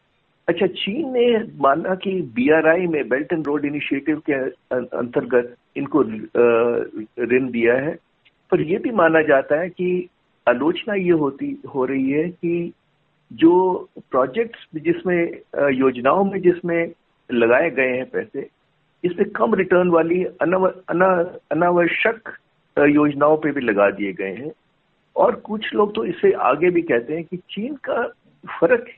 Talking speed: 140 wpm